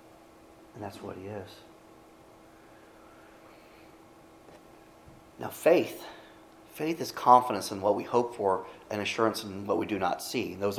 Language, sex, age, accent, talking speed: English, male, 30-49, American, 135 wpm